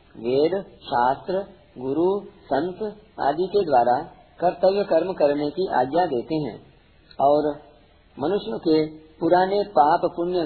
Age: 50-69